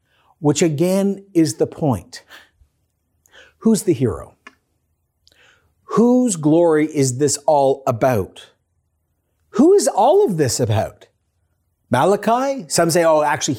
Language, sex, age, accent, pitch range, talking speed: English, male, 50-69, American, 130-195 Hz, 110 wpm